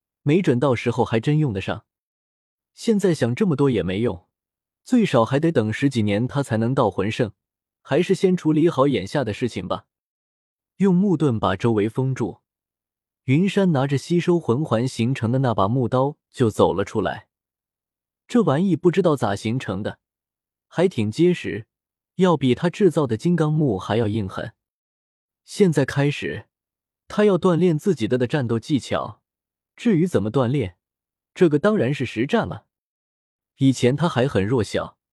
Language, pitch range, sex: Chinese, 115-165 Hz, male